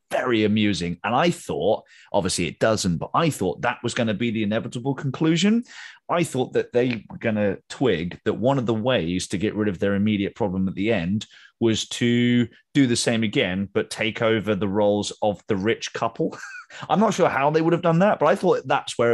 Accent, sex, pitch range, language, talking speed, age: British, male, 100-130 Hz, English, 225 wpm, 30-49